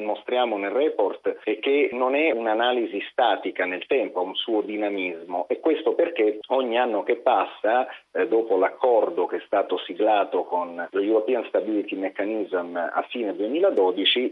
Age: 40-59